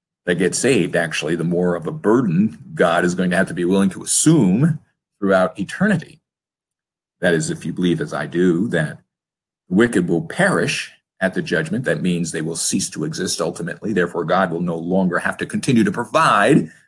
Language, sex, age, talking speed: English, male, 50-69, 195 wpm